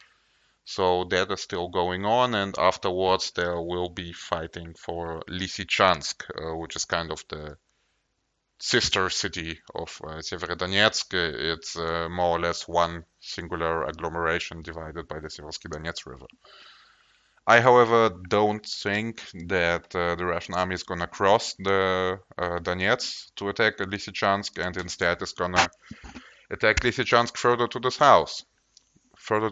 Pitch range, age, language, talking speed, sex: 85-100 Hz, 20-39, English, 140 wpm, male